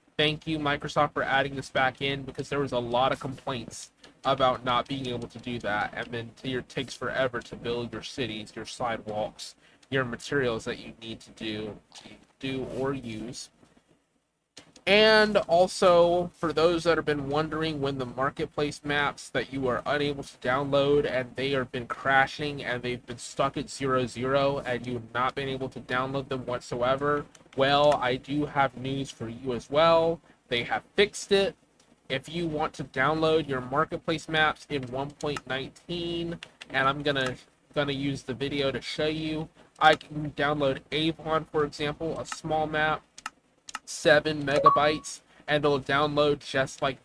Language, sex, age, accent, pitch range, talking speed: English, male, 20-39, American, 130-150 Hz, 170 wpm